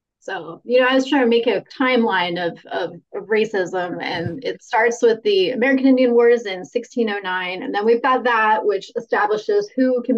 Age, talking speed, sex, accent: 20-39, 195 wpm, female, American